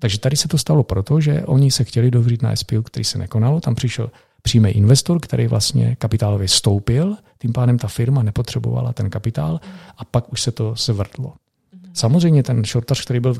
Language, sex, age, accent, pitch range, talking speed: Czech, male, 40-59, native, 110-130 Hz, 195 wpm